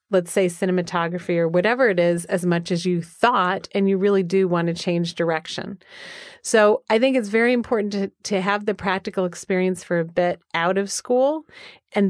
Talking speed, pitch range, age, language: 195 wpm, 180-215 Hz, 30-49, English